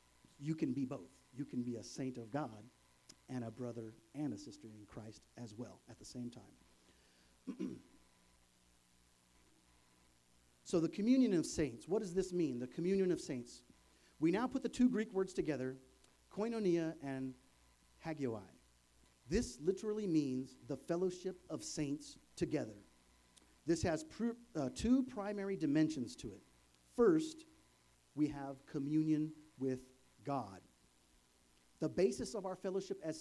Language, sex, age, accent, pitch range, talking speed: English, male, 40-59, American, 115-180 Hz, 140 wpm